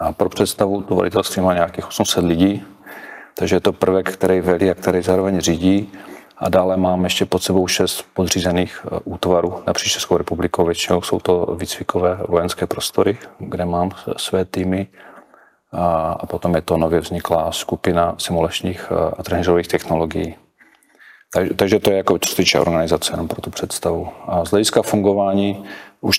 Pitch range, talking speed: 85-95 Hz, 150 wpm